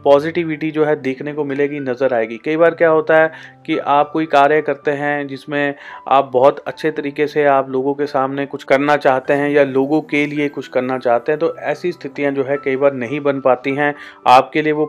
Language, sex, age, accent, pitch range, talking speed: Hindi, male, 40-59, native, 135-155 Hz, 220 wpm